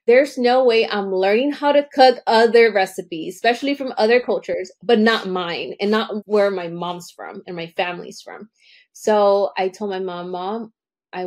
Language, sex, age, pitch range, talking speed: English, female, 20-39, 185-235 Hz, 180 wpm